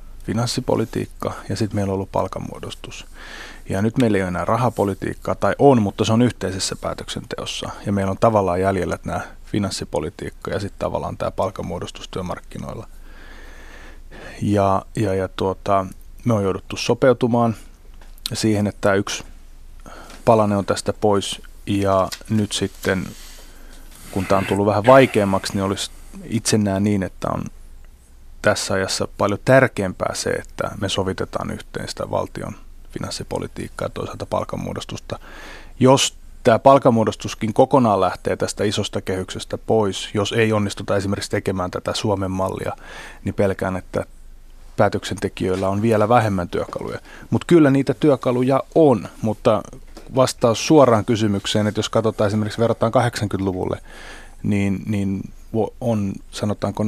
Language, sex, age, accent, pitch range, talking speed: Finnish, male, 30-49, native, 95-110 Hz, 130 wpm